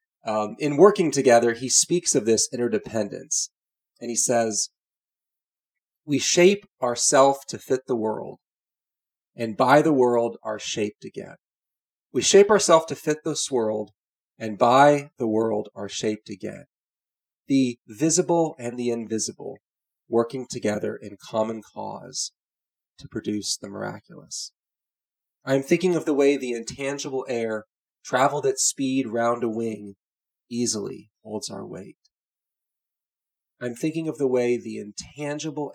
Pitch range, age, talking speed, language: 110-140 Hz, 30-49, 135 wpm, English